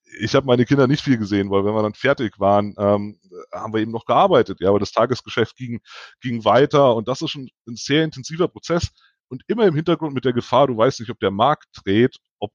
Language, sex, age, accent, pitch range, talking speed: German, male, 30-49, German, 105-130 Hz, 235 wpm